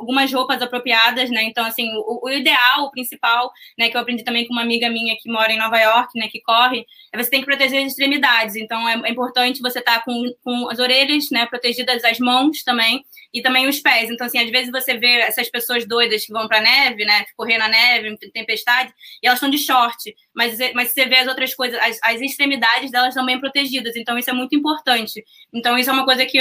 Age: 20-39